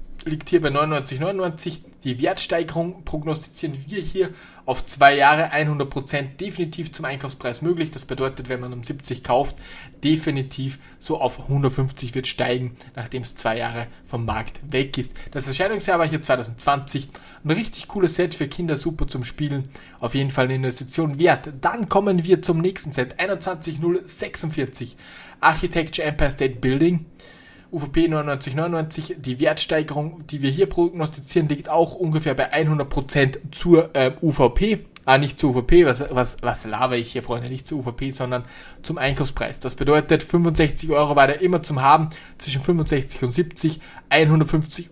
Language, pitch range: German, 130-160 Hz